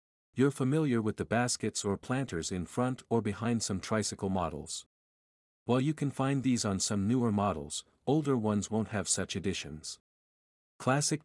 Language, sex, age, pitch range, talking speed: English, male, 50-69, 95-125 Hz, 160 wpm